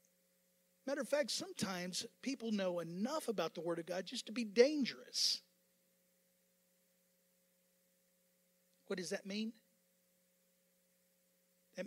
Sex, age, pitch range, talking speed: male, 50-69, 170-200 Hz, 105 wpm